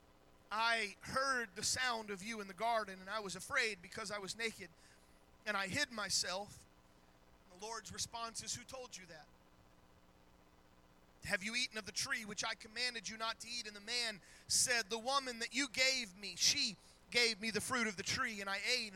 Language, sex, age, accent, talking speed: English, male, 30-49, American, 200 wpm